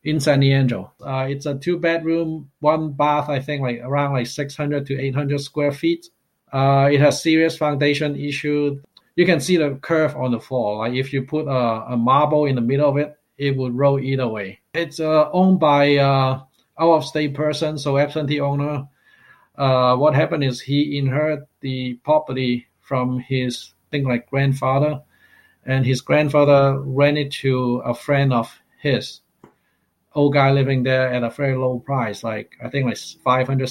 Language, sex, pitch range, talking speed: English, male, 130-145 Hz, 175 wpm